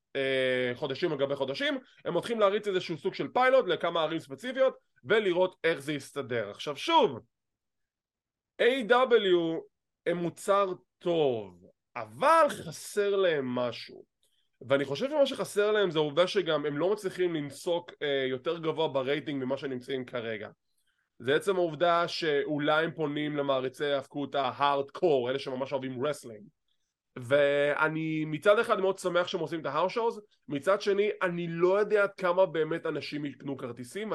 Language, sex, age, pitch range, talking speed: English, male, 20-39, 140-185 Hz, 110 wpm